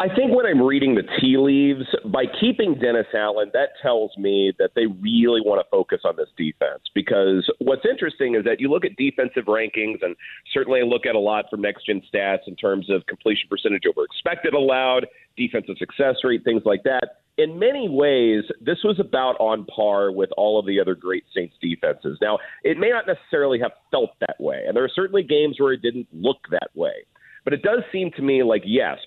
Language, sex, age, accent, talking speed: English, male, 40-59, American, 210 wpm